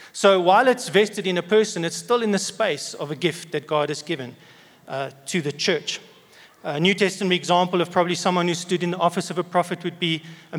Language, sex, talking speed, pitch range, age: English, male, 230 wpm, 160-180 Hz, 40-59